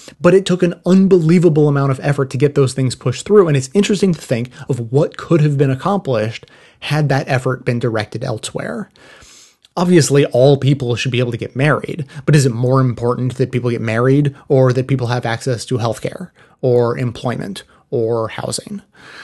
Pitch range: 125-150 Hz